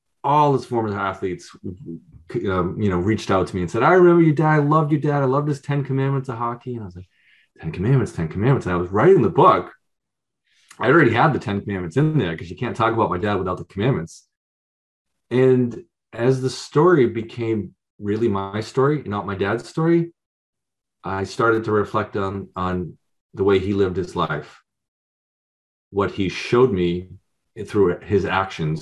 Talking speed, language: 185 wpm, English